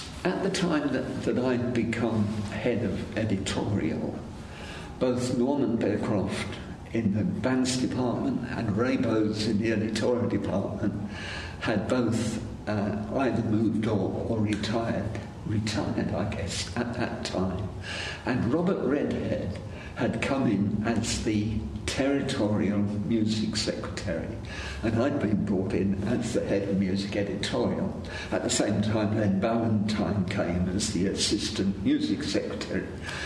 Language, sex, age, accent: English, male, 60-79, British